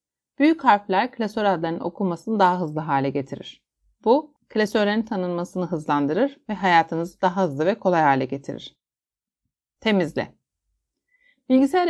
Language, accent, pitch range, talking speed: Turkish, native, 155-220 Hz, 115 wpm